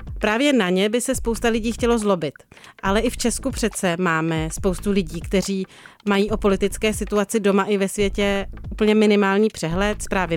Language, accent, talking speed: Czech, native, 175 wpm